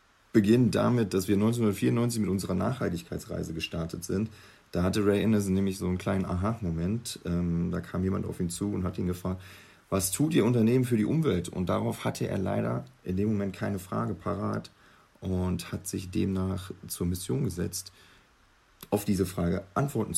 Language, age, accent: German, 40-59, German